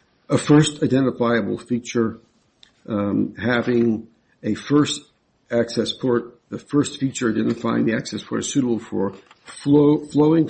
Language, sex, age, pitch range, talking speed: English, male, 60-79, 110-130 Hz, 125 wpm